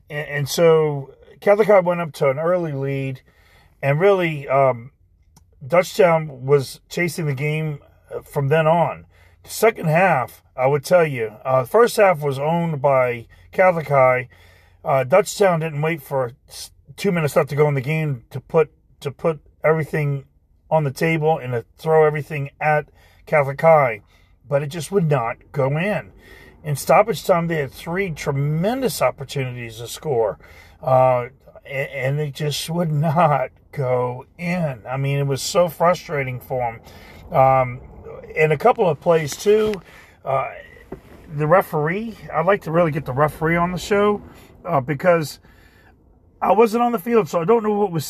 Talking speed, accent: 165 wpm, American